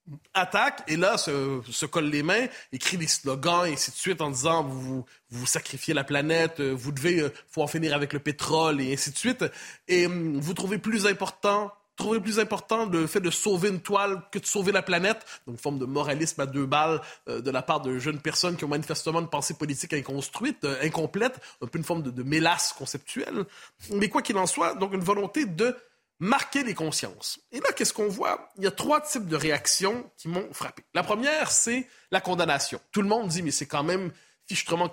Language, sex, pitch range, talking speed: French, male, 150-205 Hz, 220 wpm